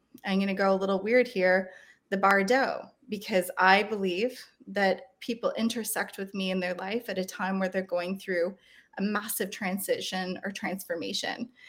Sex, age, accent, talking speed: female, 20-39, American, 170 wpm